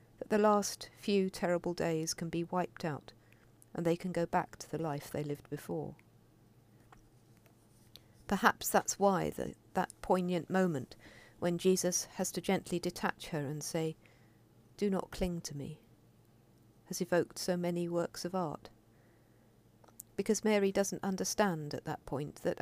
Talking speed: 145 wpm